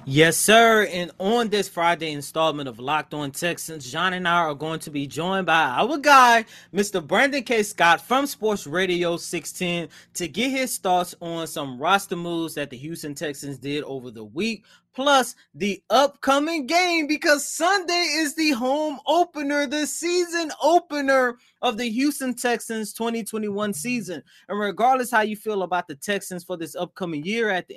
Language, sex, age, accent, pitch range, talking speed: English, male, 20-39, American, 170-240 Hz, 170 wpm